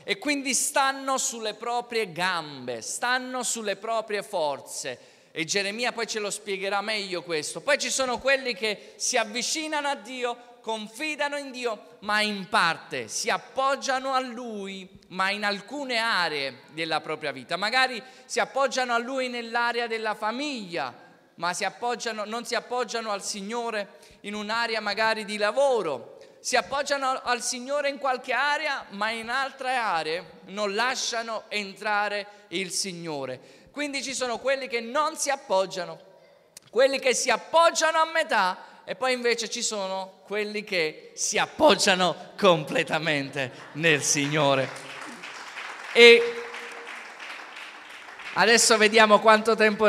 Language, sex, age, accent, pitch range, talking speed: Italian, male, 20-39, native, 195-260 Hz, 135 wpm